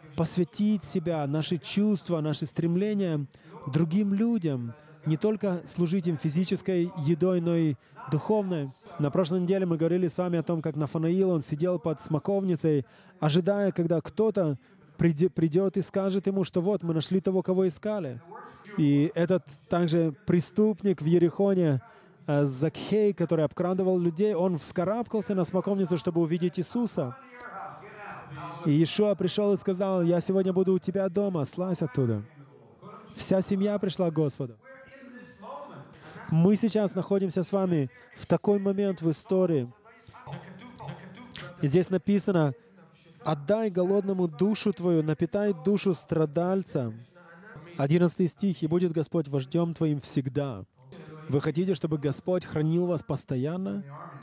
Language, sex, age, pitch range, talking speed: English, male, 20-39, 155-190 Hz, 130 wpm